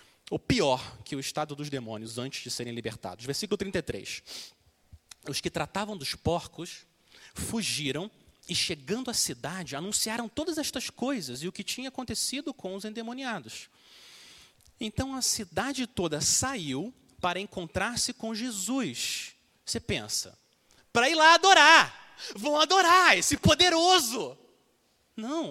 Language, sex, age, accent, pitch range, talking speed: Portuguese, male, 30-49, Brazilian, 200-335 Hz, 130 wpm